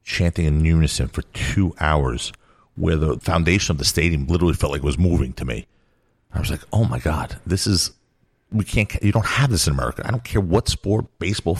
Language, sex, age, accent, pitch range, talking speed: English, male, 50-69, American, 75-95 Hz, 215 wpm